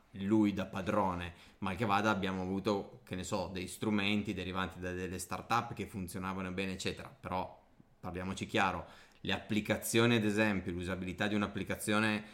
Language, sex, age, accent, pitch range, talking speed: Italian, male, 30-49, native, 95-115 Hz, 155 wpm